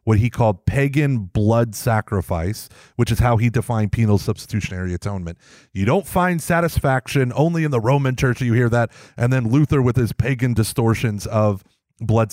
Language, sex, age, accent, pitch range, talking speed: English, male, 30-49, American, 110-150 Hz, 170 wpm